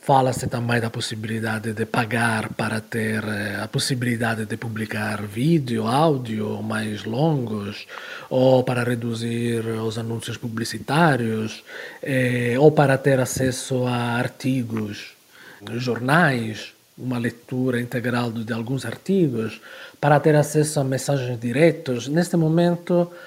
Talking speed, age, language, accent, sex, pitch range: 115 wpm, 40-59, Portuguese, Italian, male, 120-170 Hz